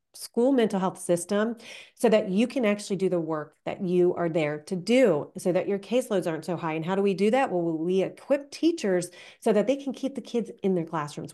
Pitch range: 170-215 Hz